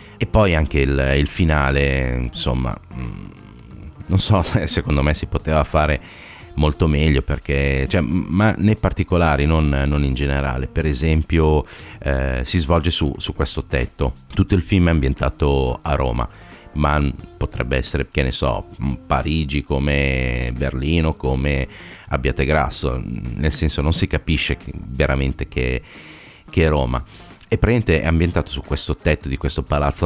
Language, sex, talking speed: Italian, male, 145 wpm